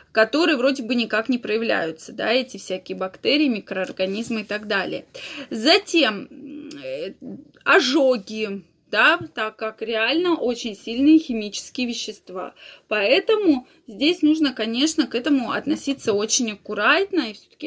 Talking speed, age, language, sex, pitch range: 120 wpm, 20-39, Russian, female, 210-275 Hz